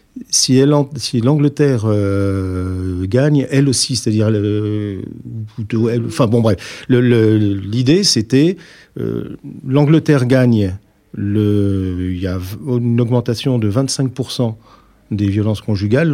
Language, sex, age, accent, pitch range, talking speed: French, male, 50-69, French, 95-130 Hz, 110 wpm